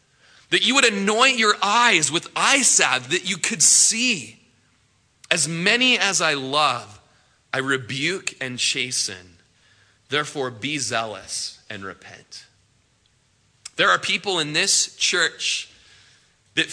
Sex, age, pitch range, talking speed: male, 30-49, 125-205 Hz, 120 wpm